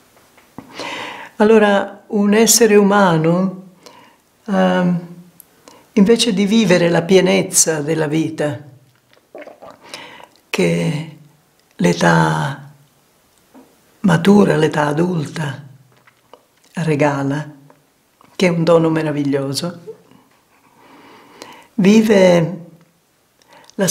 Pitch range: 150-205 Hz